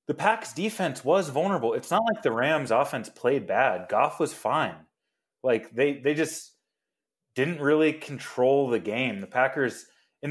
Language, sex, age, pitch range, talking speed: English, male, 20-39, 110-145 Hz, 165 wpm